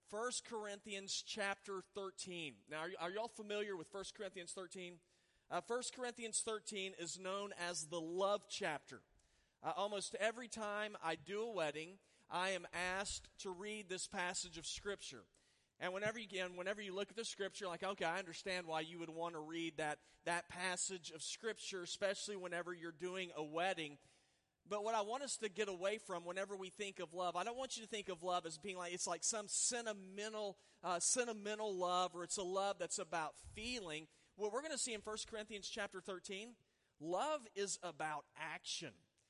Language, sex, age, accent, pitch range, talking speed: English, male, 30-49, American, 175-210 Hz, 190 wpm